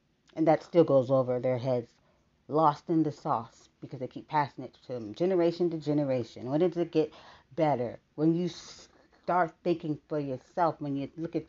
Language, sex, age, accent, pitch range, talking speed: English, female, 40-59, American, 140-175 Hz, 190 wpm